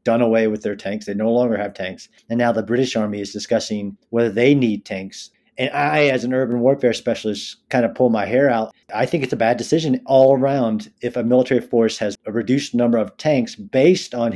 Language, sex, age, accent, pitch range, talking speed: English, male, 40-59, American, 115-135 Hz, 225 wpm